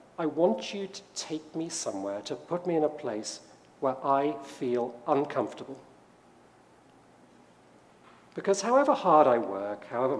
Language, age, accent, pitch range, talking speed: English, 40-59, British, 125-180 Hz, 135 wpm